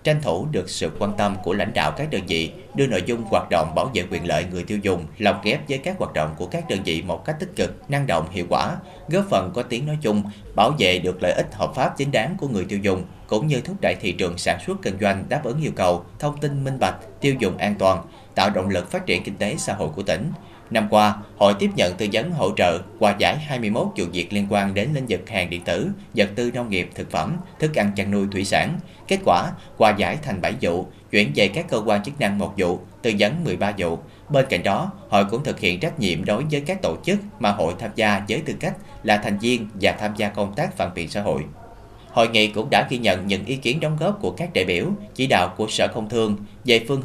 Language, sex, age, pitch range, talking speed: Vietnamese, male, 30-49, 95-125 Hz, 260 wpm